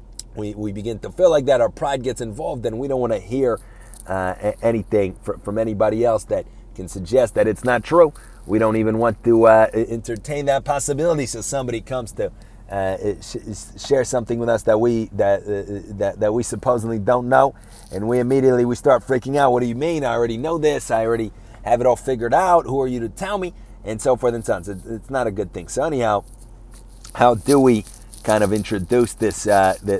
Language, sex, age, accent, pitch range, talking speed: English, male, 30-49, American, 105-125 Hz, 220 wpm